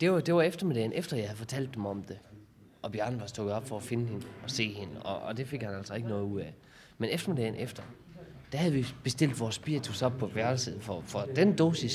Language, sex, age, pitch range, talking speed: Danish, male, 30-49, 115-160 Hz, 250 wpm